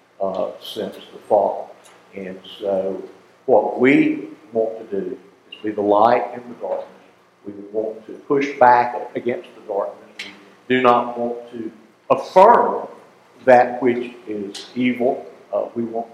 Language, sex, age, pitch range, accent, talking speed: English, male, 60-79, 115-155 Hz, American, 145 wpm